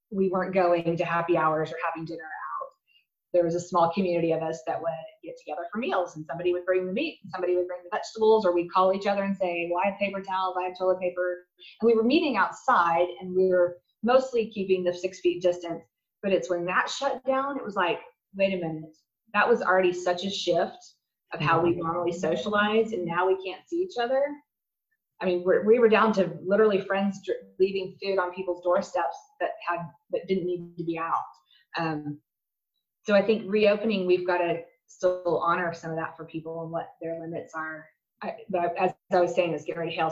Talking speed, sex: 225 wpm, female